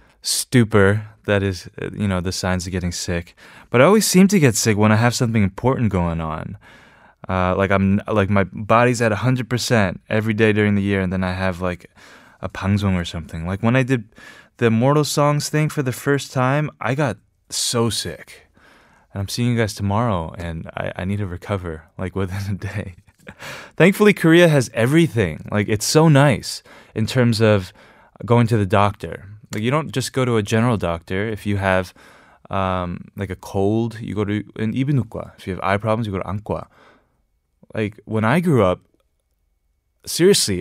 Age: 20-39